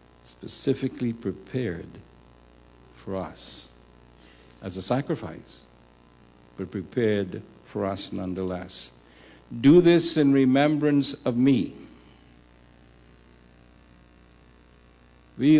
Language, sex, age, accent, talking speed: English, male, 60-79, American, 75 wpm